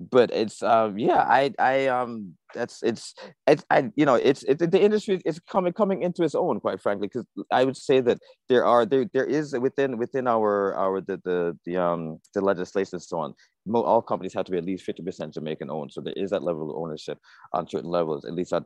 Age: 30-49